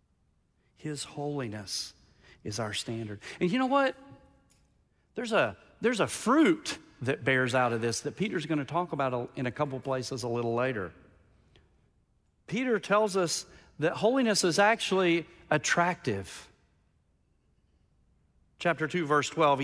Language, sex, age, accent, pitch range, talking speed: English, male, 40-59, American, 120-170 Hz, 130 wpm